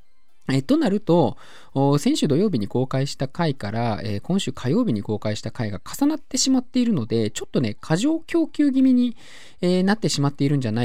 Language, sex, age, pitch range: Japanese, male, 20-39, 105-175 Hz